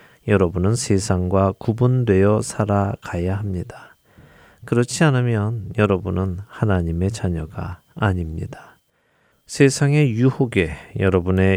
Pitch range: 95-125 Hz